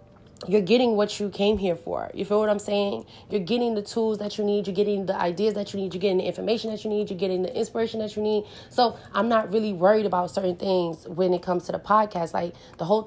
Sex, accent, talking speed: female, American, 260 wpm